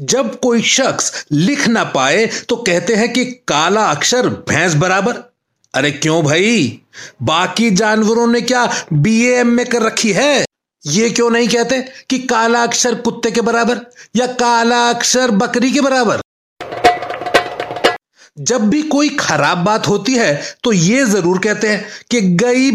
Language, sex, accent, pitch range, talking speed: Hindi, male, native, 205-240 Hz, 150 wpm